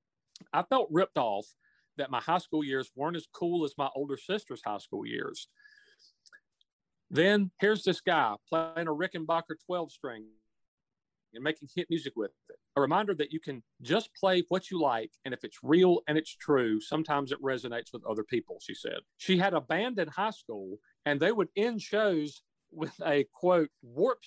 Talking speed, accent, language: 185 wpm, American, English